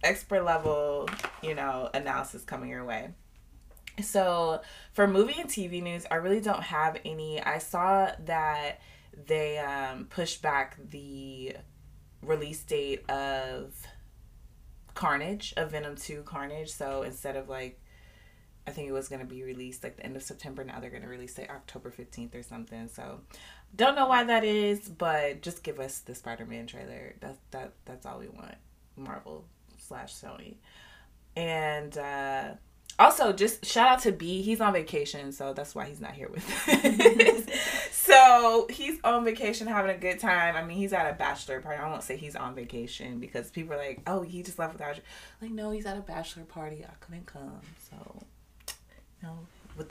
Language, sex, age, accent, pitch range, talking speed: English, female, 20-39, American, 135-200 Hz, 175 wpm